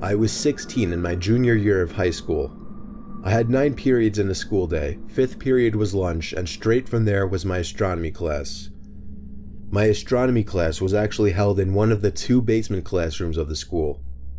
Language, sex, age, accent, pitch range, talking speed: English, male, 30-49, American, 90-110 Hz, 190 wpm